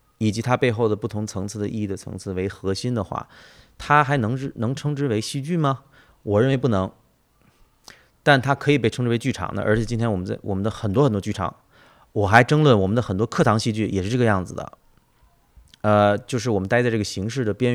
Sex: male